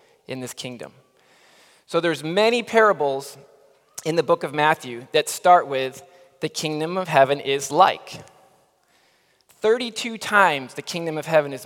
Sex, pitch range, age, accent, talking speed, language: male, 140-180 Hz, 20-39, American, 145 wpm, English